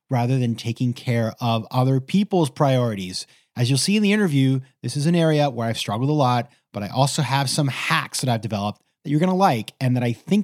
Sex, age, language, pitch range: male, 30-49, English, 120-165 Hz